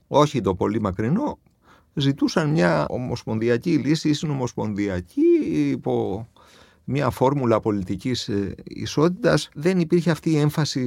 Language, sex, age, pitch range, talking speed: Greek, male, 50-69, 105-150 Hz, 110 wpm